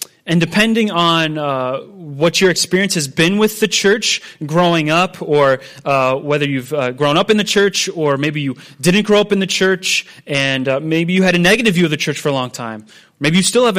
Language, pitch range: English, 150-195 Hz